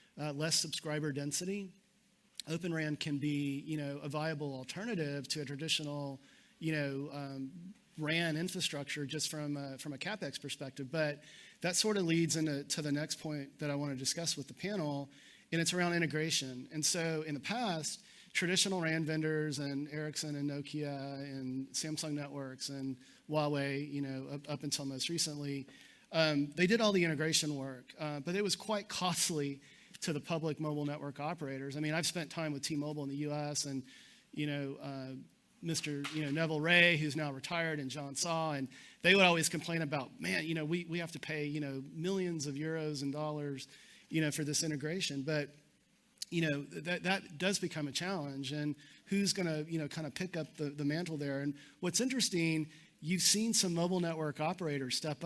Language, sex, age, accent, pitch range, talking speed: English, male, 40-59, American, 145-170 Hz, 190 wpm